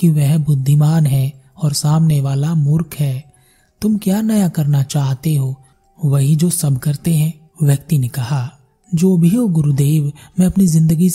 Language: Hindi